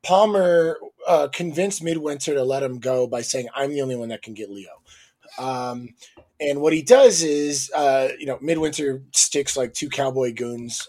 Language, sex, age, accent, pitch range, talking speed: English, male, 20-39, American, 130-160 Hz, 180 wpm